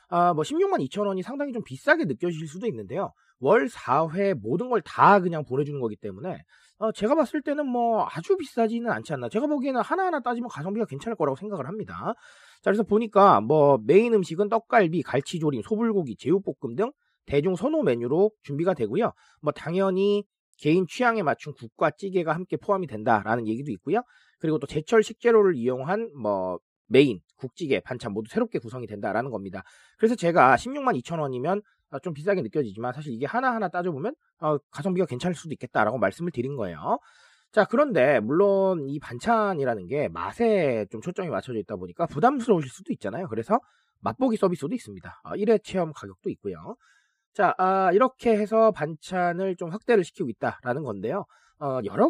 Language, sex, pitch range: Korean, male, 150-230 Hz